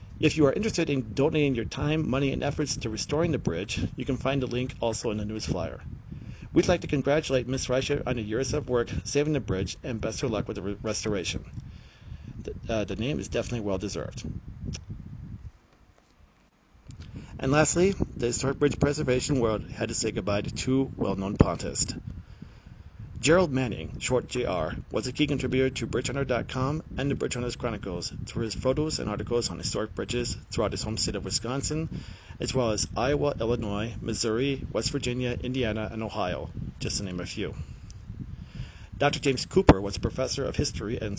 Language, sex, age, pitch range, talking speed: English, male, 40-59, 105-135 Hz, 180 wpm